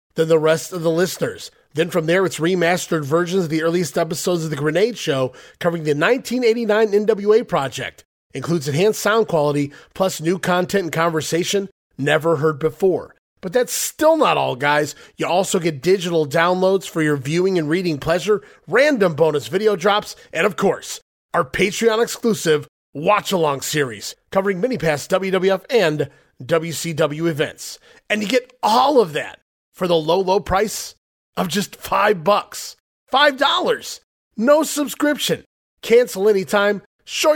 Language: English